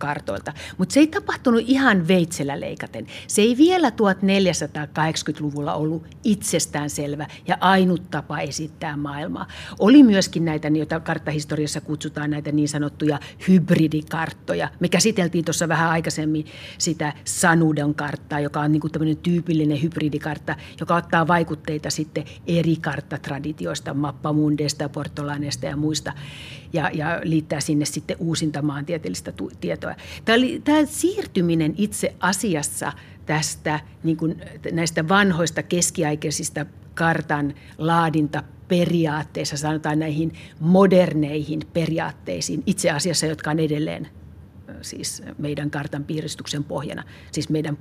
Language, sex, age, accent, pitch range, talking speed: Finnish, female, 60-79, native, 150-175 Hz, 105 wpm